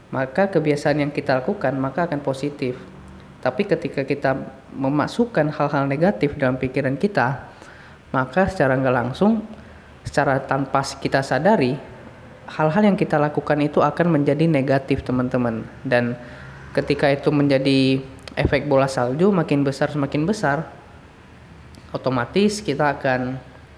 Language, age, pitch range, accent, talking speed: Indonesian, 20-39, 130-160 Hz, native, 120 wpm